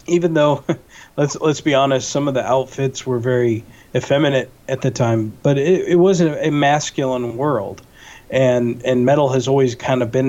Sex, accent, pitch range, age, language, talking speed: male, American, 120-140 Hz, 40-59, English, 185 wpm